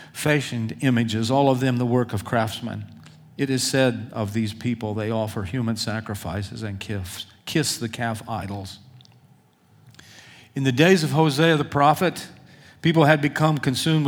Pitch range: 120-145 Hz